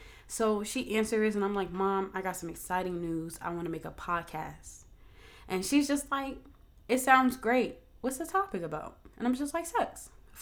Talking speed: 200 wpm